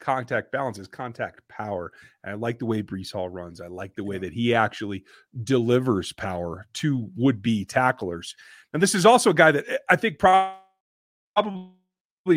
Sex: male